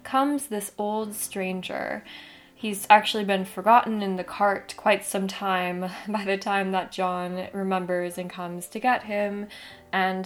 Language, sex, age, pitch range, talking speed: English, female, 10-29, 180-210 Hz, 150 wpm